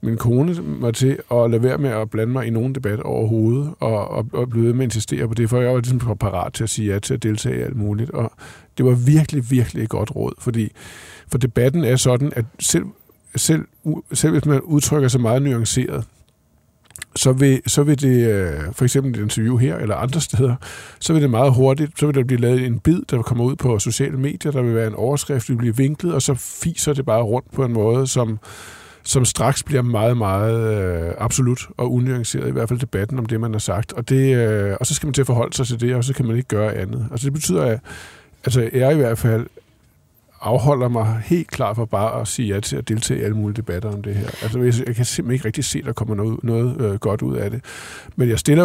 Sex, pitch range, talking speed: male, 115-140 Hz, 245 wpm